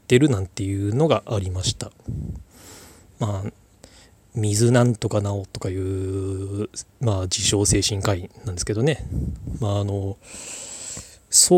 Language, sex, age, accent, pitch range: Japanese, male, 20-39, native, 100-115 Hz